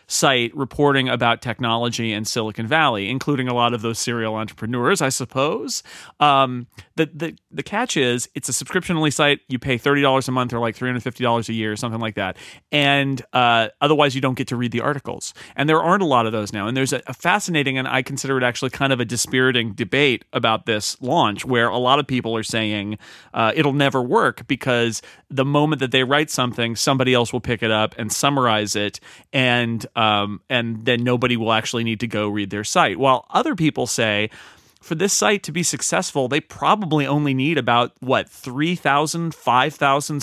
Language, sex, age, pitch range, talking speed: English, male, 30-49, 115-140 Hz, 205 wpm